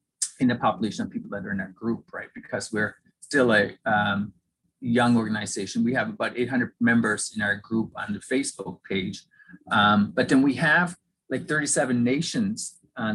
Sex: male